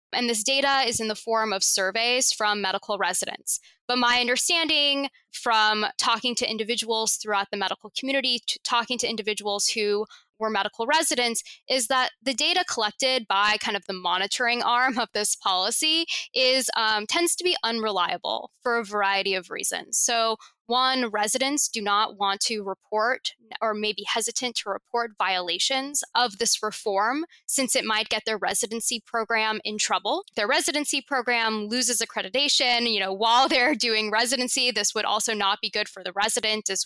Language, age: English, 10-29